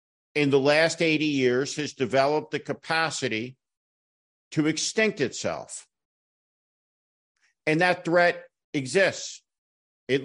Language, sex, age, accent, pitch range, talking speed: English, male, 50-69, American, 135-185 Hz, 100 wpm